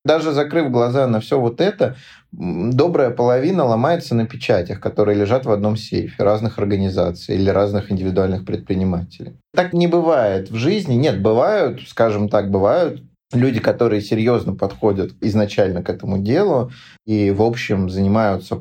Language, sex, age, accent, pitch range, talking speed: Russian, male, 20-39, native, 100-125 Hz, 145 wpm